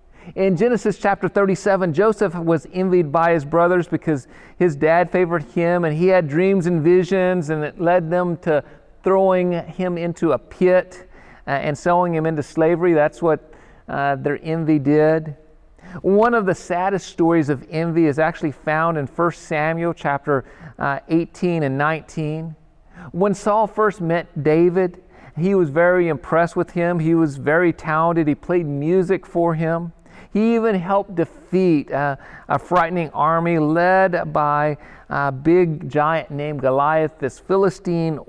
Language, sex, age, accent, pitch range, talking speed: English, male, 40-59, American, 150-180 Hz, 150 wpm